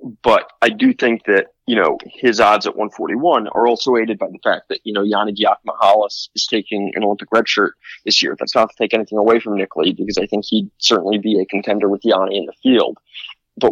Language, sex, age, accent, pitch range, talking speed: English, male, 20-39, American, 100-110 Hz, 230 wpm